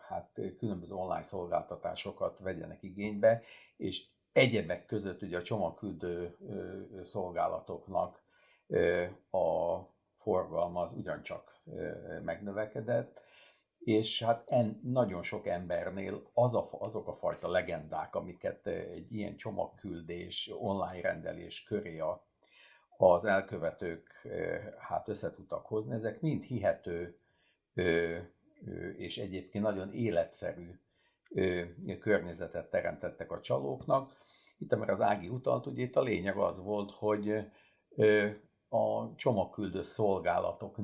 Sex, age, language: male, 50-69, Hungarian